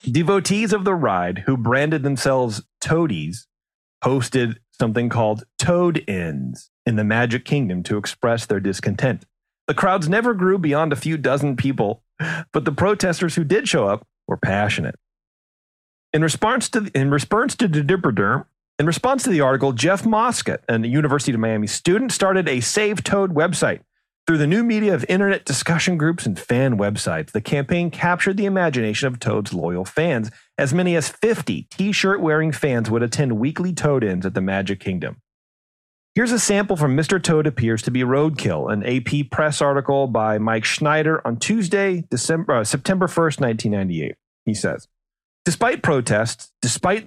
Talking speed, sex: 165 wpm, male